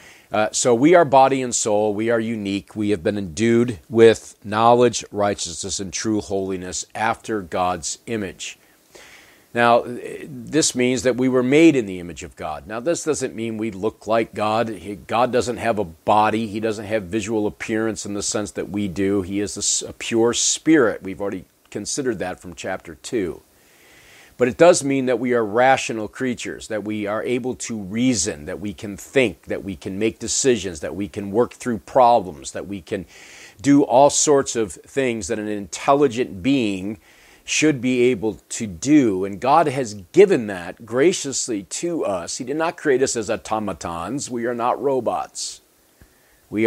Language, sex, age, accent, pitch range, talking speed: English, male, 40-59, American, 100-125 Hz, 180 wpm